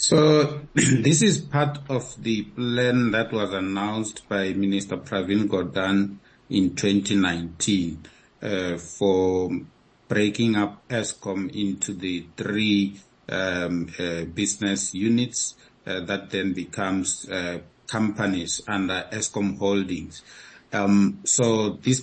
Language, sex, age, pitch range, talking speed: English, male, 50-69, 95-115 Hz, 110 wpm